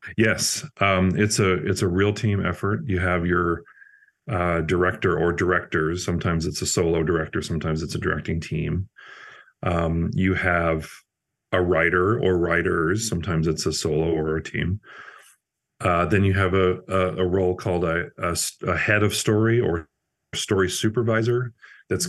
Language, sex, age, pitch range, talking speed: English, male, 40-59, 85-105 Hz, 160 wpm